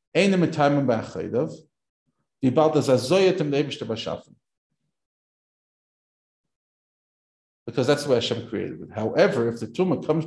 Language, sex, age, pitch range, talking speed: English, male, 50-69, 115-155 Hz, 70 wpm